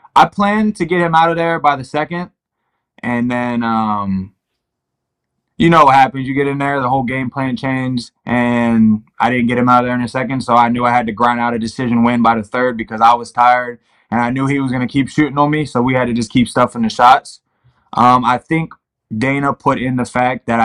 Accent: American